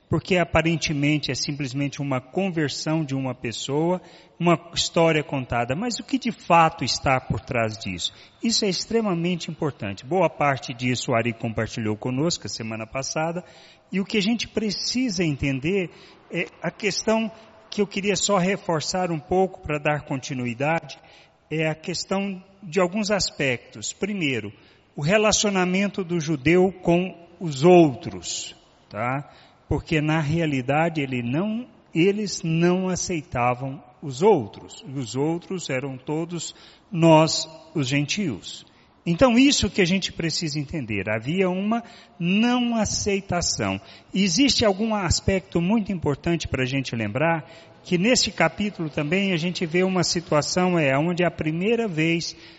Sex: male